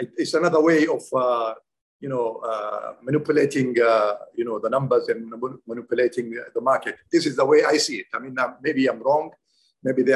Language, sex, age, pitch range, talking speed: English, male, 50-69, 155-205 Hz, 195 wpm